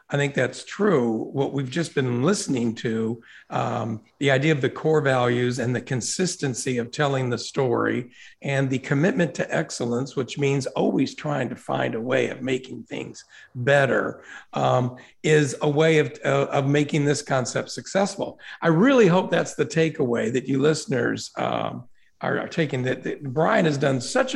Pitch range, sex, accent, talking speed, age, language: 130-160 Hz, male, American, 175 wpm, 50-69, English